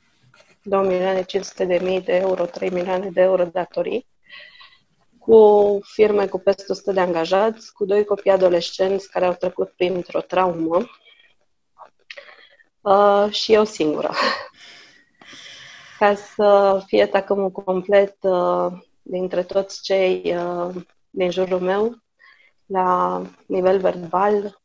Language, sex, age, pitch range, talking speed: Romanian, female, 20-39, 180-200 Hz, 115 wpm